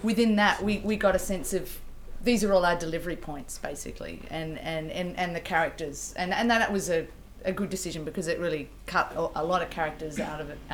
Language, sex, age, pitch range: English, female, 30-49, 160-200 Hz